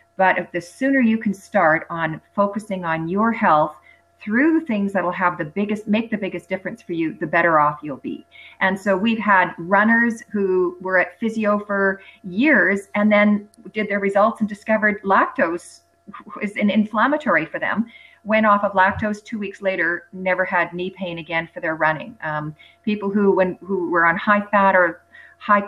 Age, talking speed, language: 40-59, 185 wpm, English